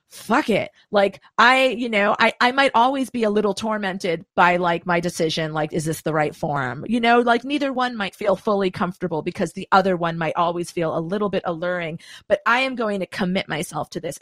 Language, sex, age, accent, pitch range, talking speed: English, female, 40-59, American, 175-240 Hz, 225 wpm